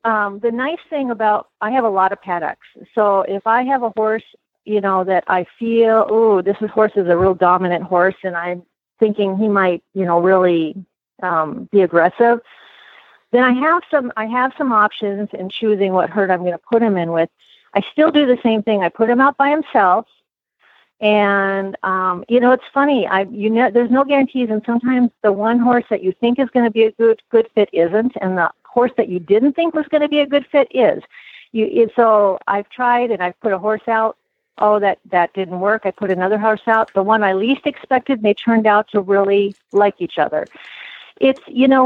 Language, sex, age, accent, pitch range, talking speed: English, female, 40-59, American, 190-240 Hz, 220 wpm